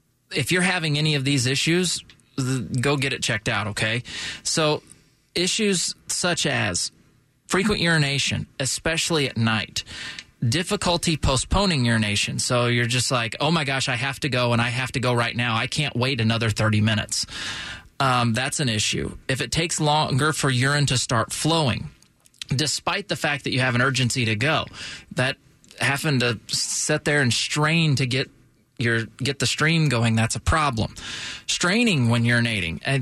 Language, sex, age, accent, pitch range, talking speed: English, male, 30-49, American, 115-150 Hz, 170 wpm